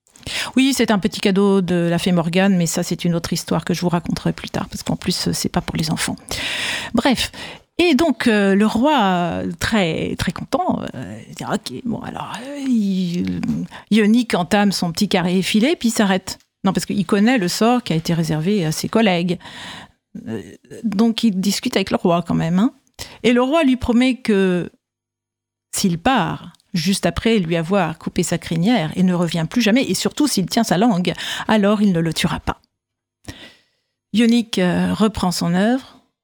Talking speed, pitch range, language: 190 wpm, 180-235 Hz, French